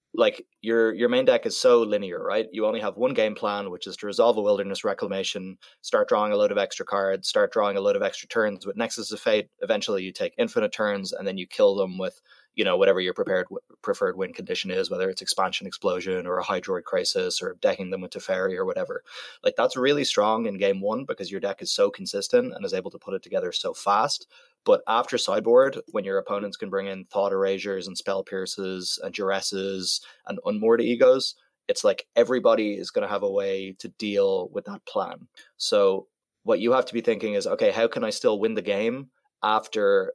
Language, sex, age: English, male, 20-39